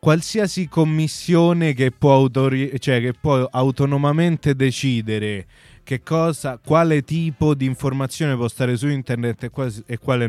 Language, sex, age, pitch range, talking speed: Italian, male, 20-39, 120-145 Hz, 105 wpm